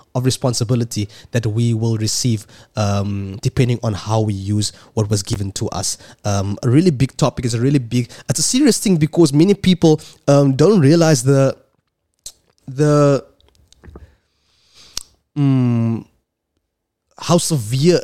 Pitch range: 110-145 Hz